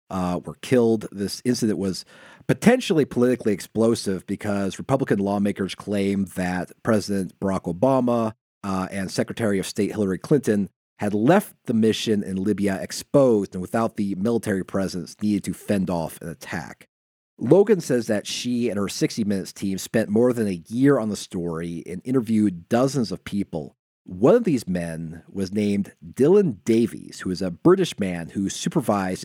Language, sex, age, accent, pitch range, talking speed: English, male, 30-49, American, 95-125 Hz, 160 wpm